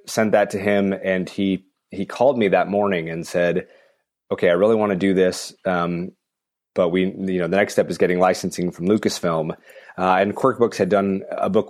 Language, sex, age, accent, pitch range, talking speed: English, male, 30-49, American, 90-105 Hz, 205 wpm